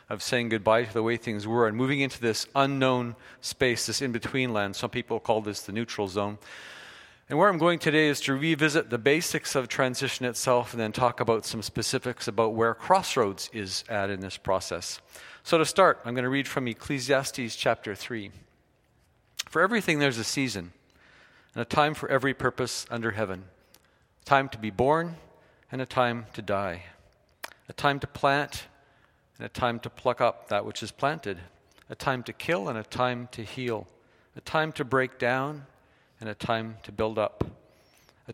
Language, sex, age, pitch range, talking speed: English, male, 40-59, 110-140 Hz, 185 wpm